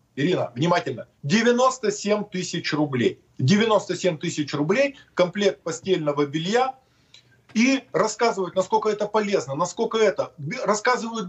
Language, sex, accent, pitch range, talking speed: Russian, male, native, 180-225 Hz, 100 wpm